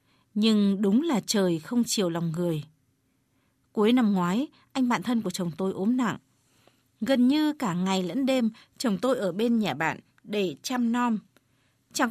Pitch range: 185-250 Hz